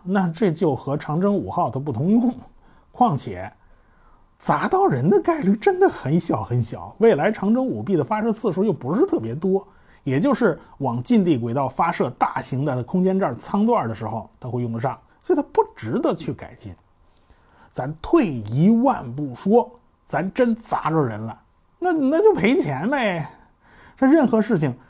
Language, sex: Chinese, male